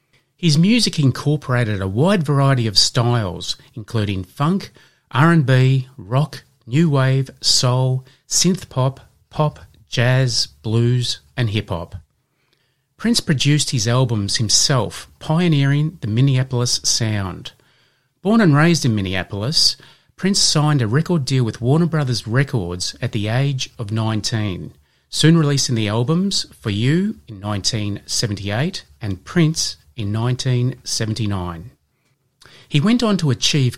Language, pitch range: English, 110-145 Hz